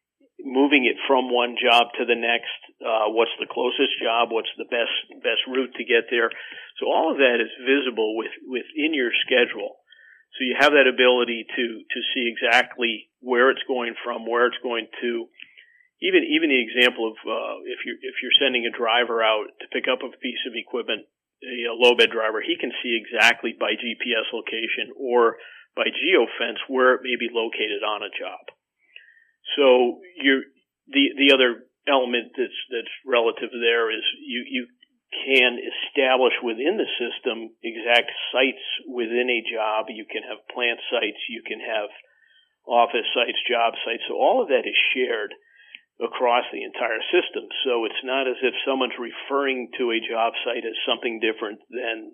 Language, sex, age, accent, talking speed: English, male, 50-69, American, 175 wpm